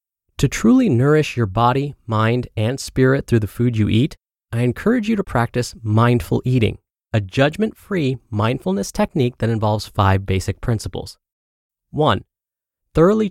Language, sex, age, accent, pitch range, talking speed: English, male, 30-49, American, 105-150 Hz, 140 wpm